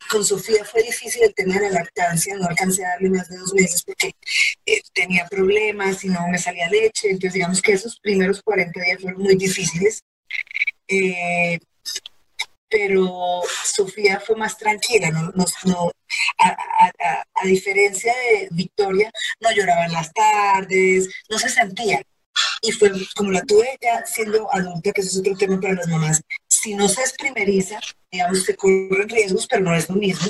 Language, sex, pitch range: Spanish, female, 180-215 Hz